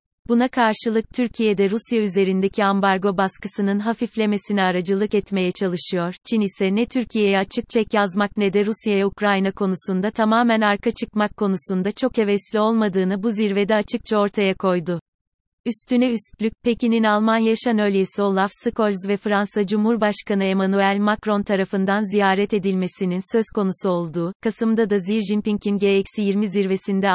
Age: 30-49